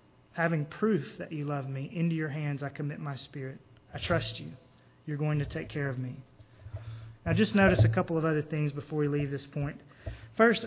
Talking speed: 210 wpm